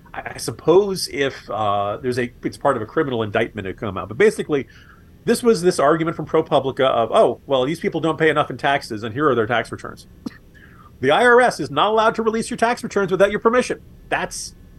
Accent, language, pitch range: American, English, 115-160 Hz